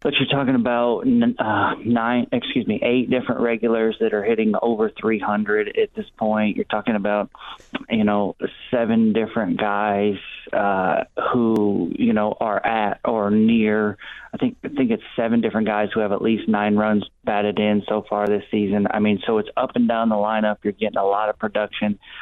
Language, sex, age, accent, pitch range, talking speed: English, male, 30-49, American, 105-120 Hz, 190 wpm